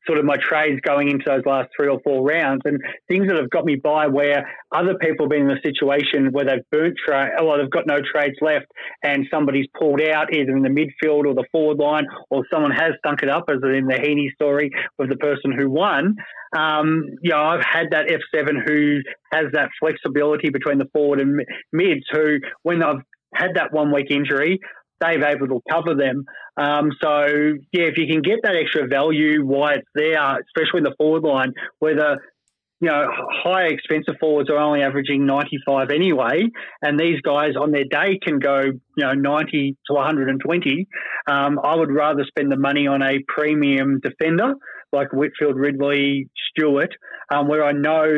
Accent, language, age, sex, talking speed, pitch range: Australian, English, 20-39, male, 195 wpm, 140-155 Hz